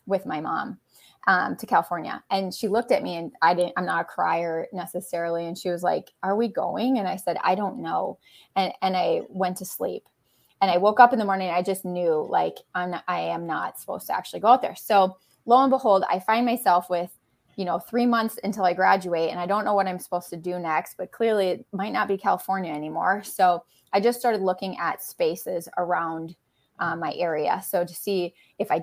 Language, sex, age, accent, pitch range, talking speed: English, female, 20-39, American, 175-215 Hz, 225 wpm